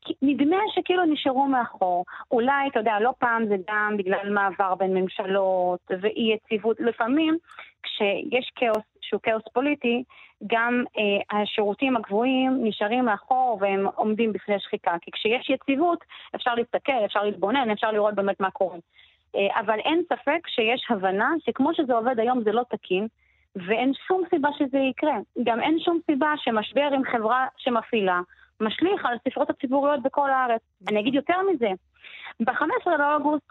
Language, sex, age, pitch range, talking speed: Hebrew, female, 30-49, 215-275 Hz, 150 wpm